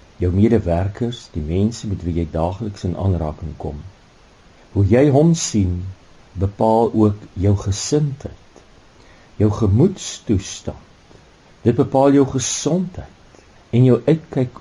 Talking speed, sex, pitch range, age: 110 wpm, male, 85-115 Hz, 50-69